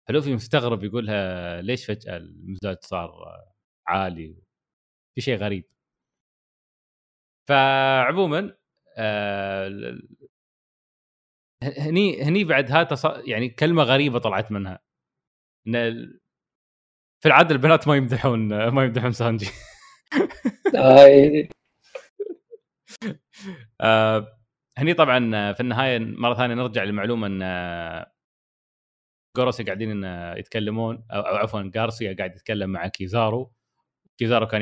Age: 30-49